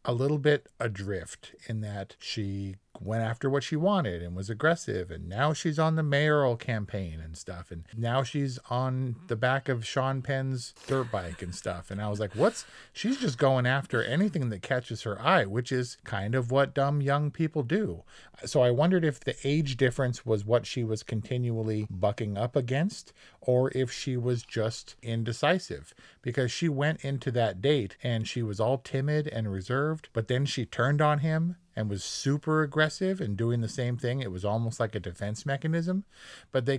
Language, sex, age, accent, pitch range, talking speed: English, male, 40-59, American, 110-140 Hz, 190 wpm